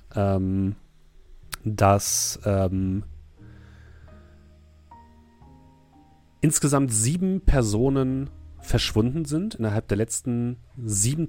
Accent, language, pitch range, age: German, German, 95-125 Hz, 40-59